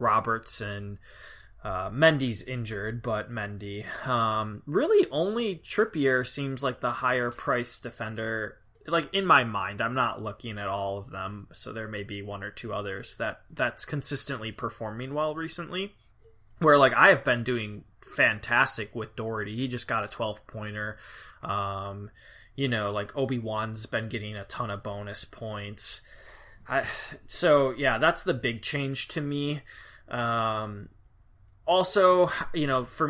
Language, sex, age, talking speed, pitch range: English, male, 20-39, 150 wpm, 110-140 Hz